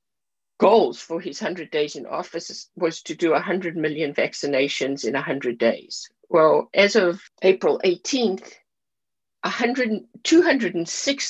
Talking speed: 115 wpm